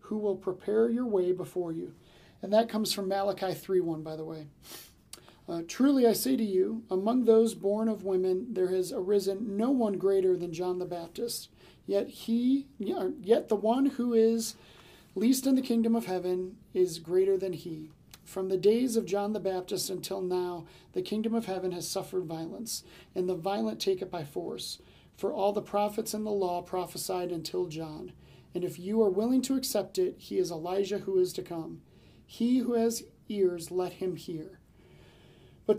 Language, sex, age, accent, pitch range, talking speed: English, male, 40-59, American, 180-220 Hz, 185 wpm